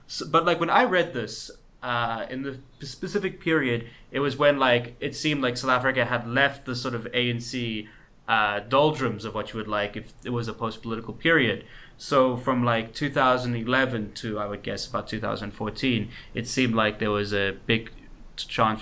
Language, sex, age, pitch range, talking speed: English, male, 20-39, 110-135 Hz, 180 wpm